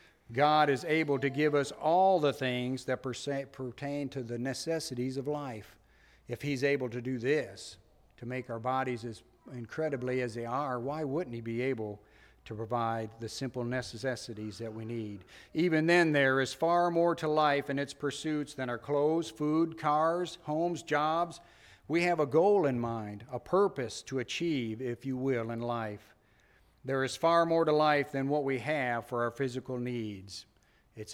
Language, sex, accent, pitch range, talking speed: English, male, American, 120-150 Hz, 175 wpm